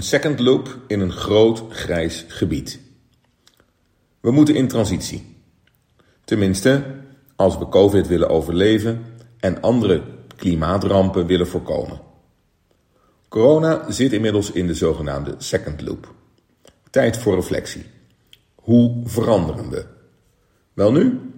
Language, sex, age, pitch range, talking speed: Dutch, male, 50-69, 90-120 Hz, 105 wpm